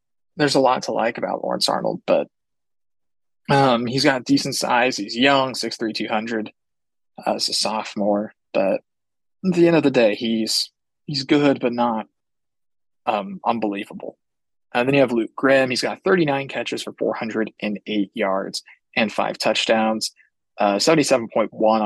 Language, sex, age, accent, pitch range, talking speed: English, male, 20-39, American, 105-120 Hz, 150 wpm